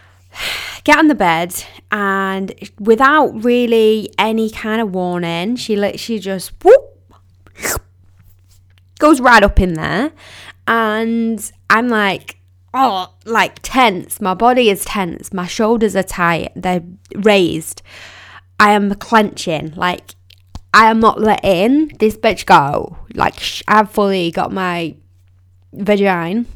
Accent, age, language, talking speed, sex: British, 10-29, English, 120 wpm, female